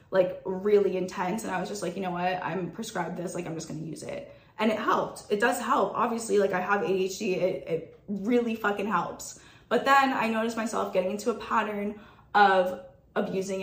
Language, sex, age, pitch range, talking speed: English, female, 20-39, 185-210 Hz, 205 wpm